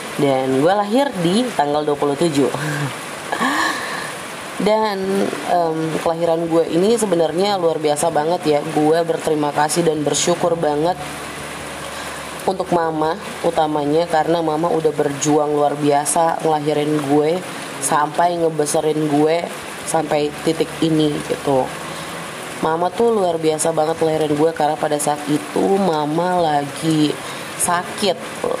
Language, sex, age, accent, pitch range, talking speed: Indonesian, female, 20-39, native, 150-165 Hz, 115 wpm